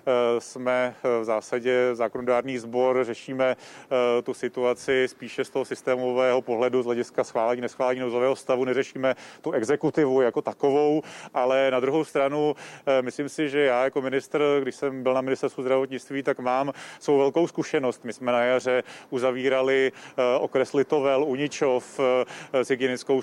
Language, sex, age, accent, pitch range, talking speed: Czech, male, 30-49, native, 130-140 Hz, 140 wpm